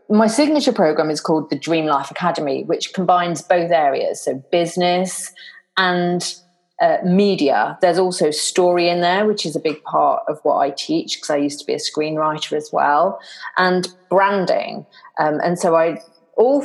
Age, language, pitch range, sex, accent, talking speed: 30-49, English, 155-220 Hz, female, British, 175 wpm